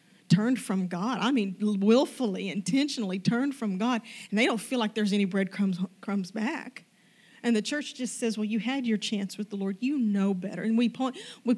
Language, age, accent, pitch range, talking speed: English, 40-59, American, 195-240 Hz, 205 wpm